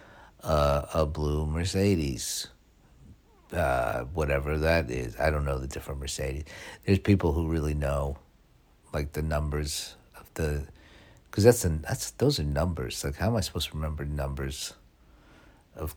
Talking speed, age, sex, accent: 150 wpm, 50-69, male, American